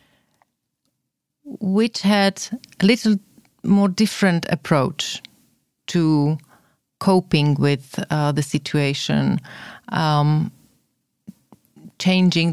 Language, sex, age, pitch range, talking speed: Slovak, female, 30-49, 150-195 Hz, 70 wpm